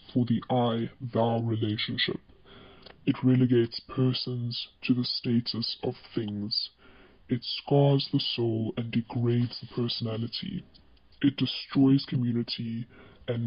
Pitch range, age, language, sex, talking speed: 110-125 Hz, 20-39, English, female, 105 wpm